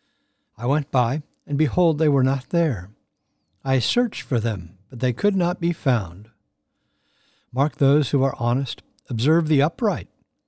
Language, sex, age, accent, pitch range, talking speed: English, male, 60-79, American, 120-155 Hz, 155 wpm